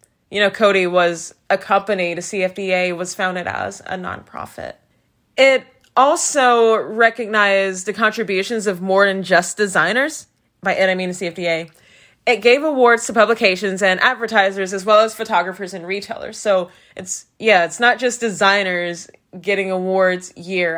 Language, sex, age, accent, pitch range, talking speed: English, female, 20-39, American, 185-230 Hz, 150 wpm